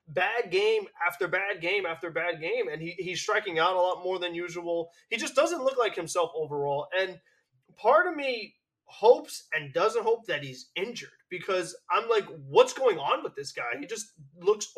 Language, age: English, 20-39